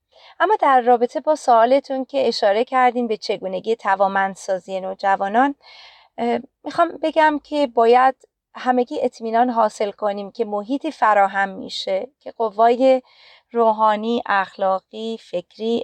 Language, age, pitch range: Persian, 30-49, 200-250 Hz